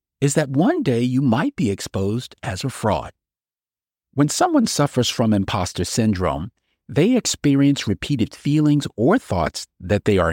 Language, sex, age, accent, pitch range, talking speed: English, male, 50-69, American, 105-150 Hz, 150 wpm